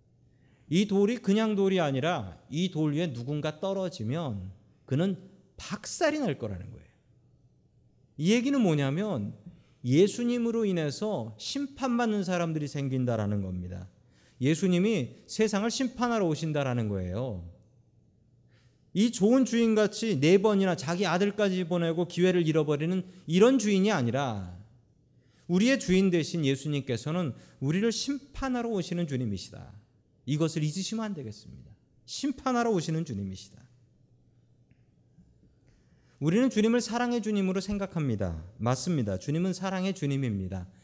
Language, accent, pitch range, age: Korean, native, 120-190 Hz, 40-59